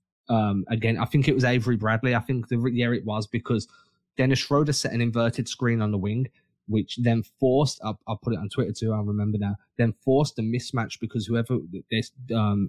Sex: male